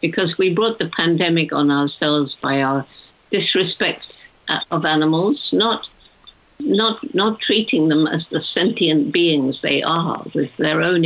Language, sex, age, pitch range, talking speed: English, female, 60-79, 145-170 Hz, 140 wpm